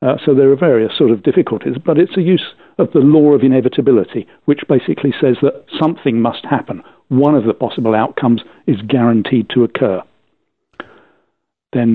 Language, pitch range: English, 120-145 Hz